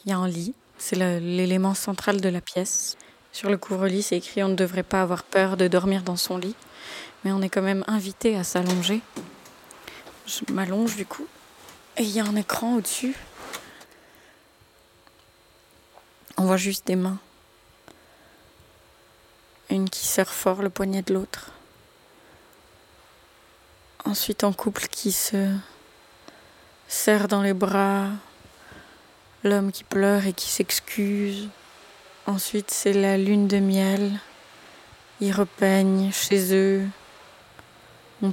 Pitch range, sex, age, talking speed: 185-200 Hz, female, 20-39, 135 wpm